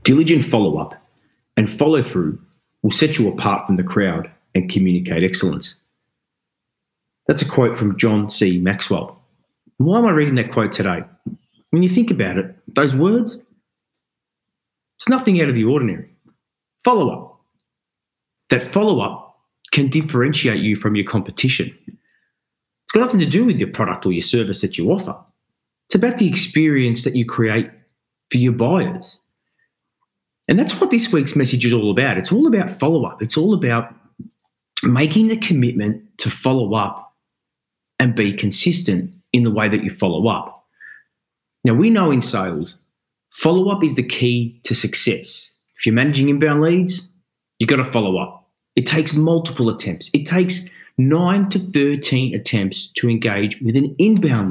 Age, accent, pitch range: 30-49, Australian, 115-180 Hz